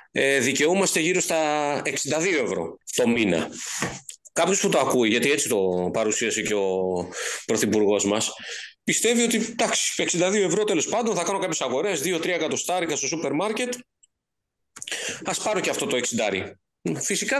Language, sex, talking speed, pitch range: Greek, male, 145 wpm, 135-220 Hz